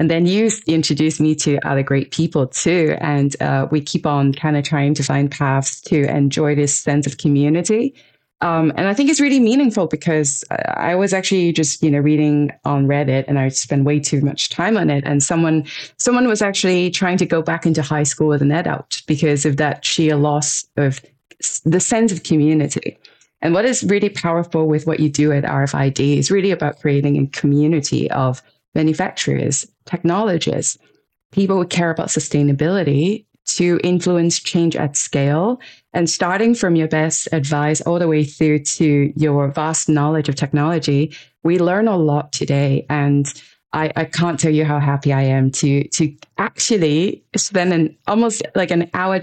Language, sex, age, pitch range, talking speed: English, female, 20-39, 145-175 Hz, 180 wpm